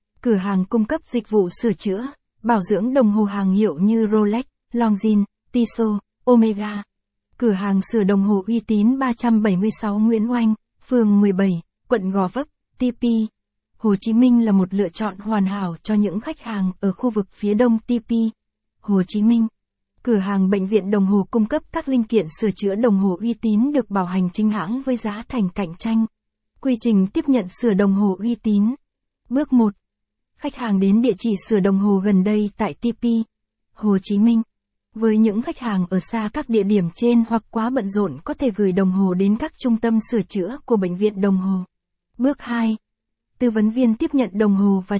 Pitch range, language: 200-235 Hz, Vietnamese